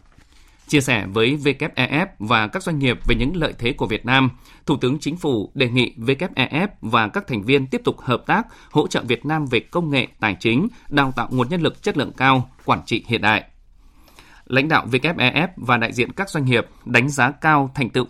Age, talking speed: 20-39, 215 wpm